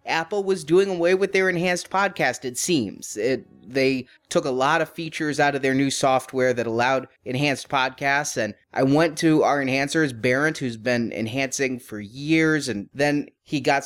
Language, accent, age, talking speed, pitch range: English, American, 30-49, 180 wpm, 130-160 Hz